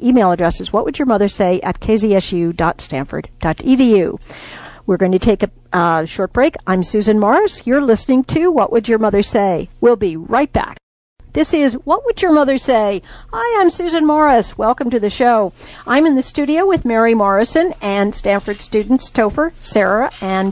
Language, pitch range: English, 195-260 Hz